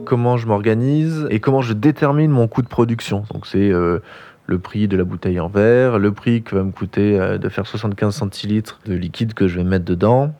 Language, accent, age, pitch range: French, French, 20-39, 100-130 Hz